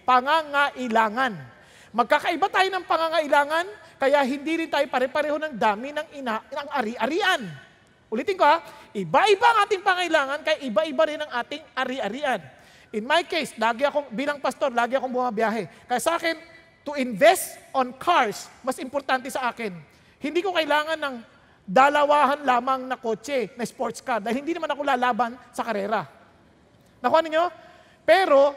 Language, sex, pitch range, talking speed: English, male, 265-355 Hz, 150 wpm